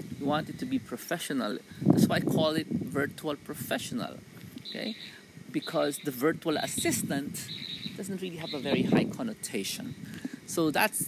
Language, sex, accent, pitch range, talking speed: English, male, Filipino, 160-260 Hz, 145 wpm